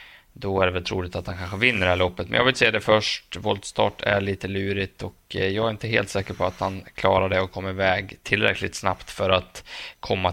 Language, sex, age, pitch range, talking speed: Swedish, male, 20-39, 95-110 Hz, 240 wpm